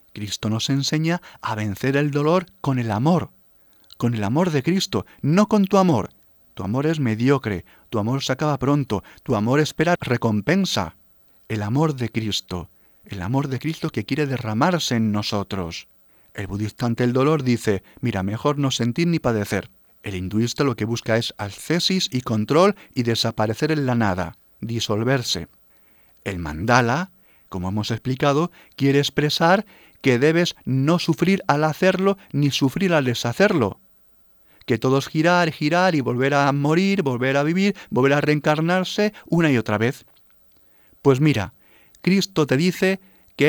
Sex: male